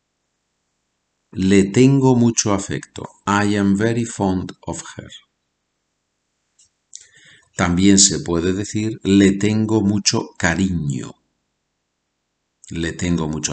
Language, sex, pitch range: Spanish, male, 85-130 Hz